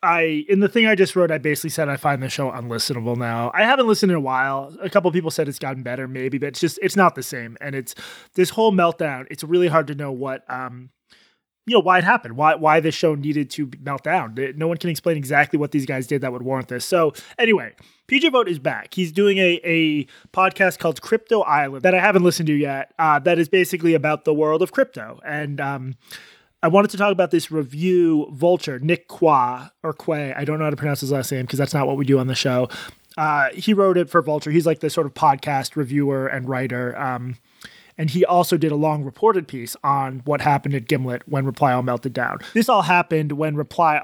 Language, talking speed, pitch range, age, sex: English, 240 wpm, 135-180 Hz, 20-39, male